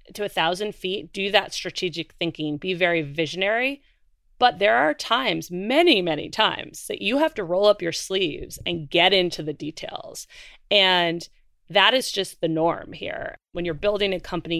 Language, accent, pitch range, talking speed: English, American, 160-200 Hz, 175 wpm